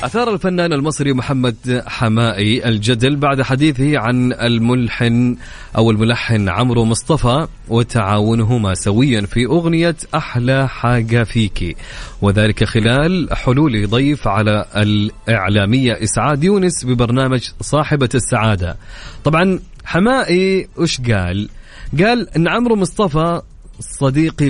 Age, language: 30-49, English